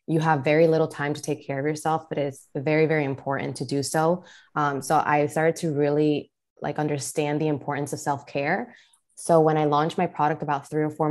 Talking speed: 215 wpm